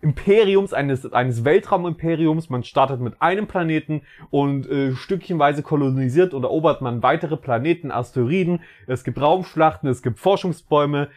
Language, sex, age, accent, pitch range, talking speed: German, male, 30-49, German, 135-185 Hz, 135 wpm